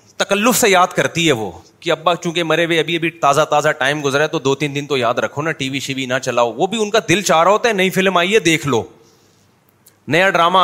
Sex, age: male, 30-49